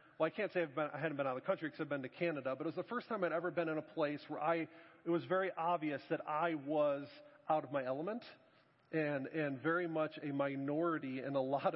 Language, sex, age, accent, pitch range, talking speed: English, male, 40-59, American, 140-170 Hz, 265 wpm